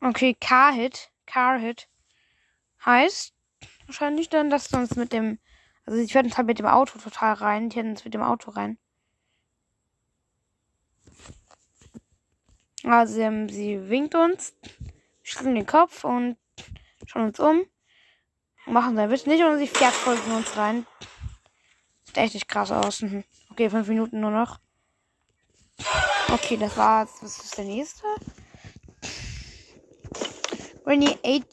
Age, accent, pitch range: 10-29, German, 215-300 Hz